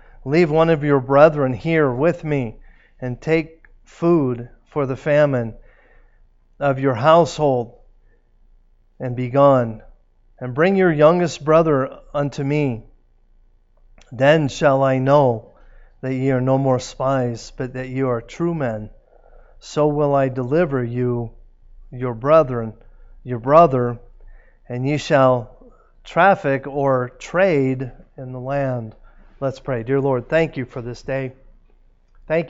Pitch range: 120-145 Hz